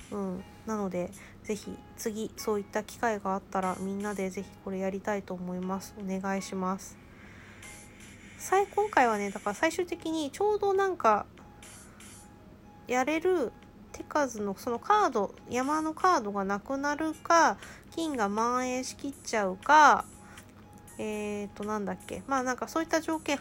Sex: female